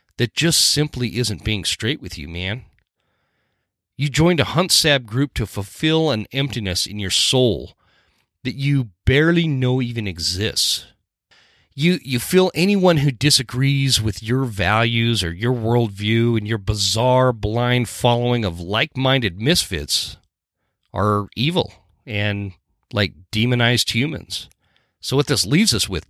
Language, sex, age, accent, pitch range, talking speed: English, male, 40-59, American, 105-140 Hz, 140 wpm